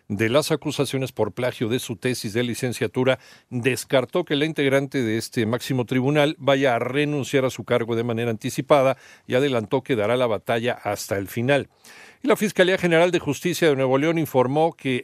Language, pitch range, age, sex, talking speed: Spanish, 120-150 Hz, 50-69, male, 185 wpm